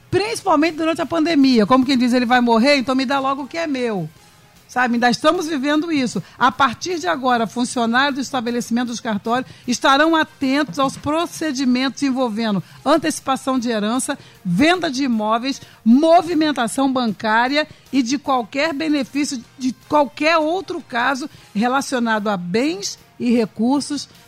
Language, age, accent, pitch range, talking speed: Portuguese, 60-79, Brazilian, 220-285 Hz, 140 wpm